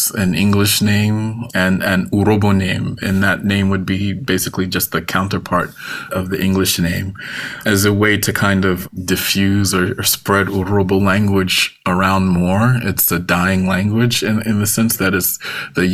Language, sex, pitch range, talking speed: English, male, 95-110 Hz, 170 wpm